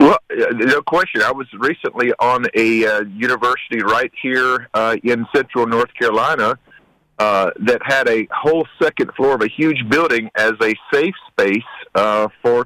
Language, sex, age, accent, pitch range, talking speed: English, male, 50-69, American, 120-155 Hz, 160 wpm